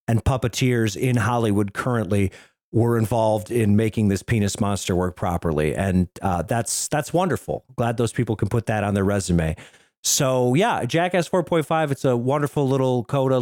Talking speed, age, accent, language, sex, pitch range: 165 wpm, 40-59, American, English, male, 105-140 Hz